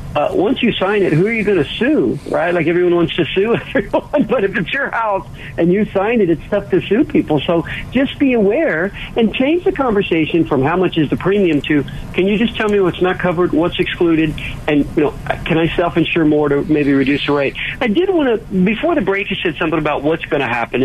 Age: 50-69